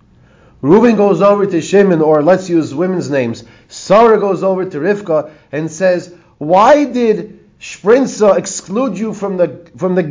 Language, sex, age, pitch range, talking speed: English, male, 30-49, 130-205 Hz, 155 wpm